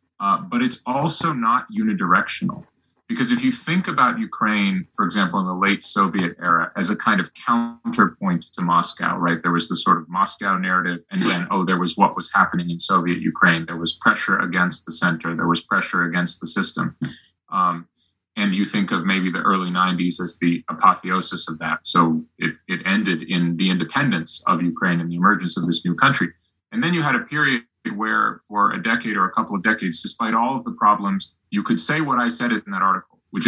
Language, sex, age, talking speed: English, male, 30-49, 210 wpm